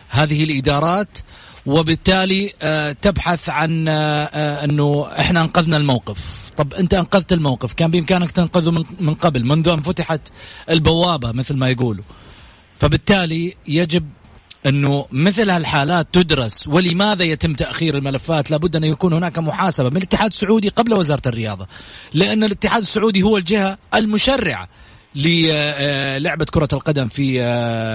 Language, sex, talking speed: English, male, 120 wpm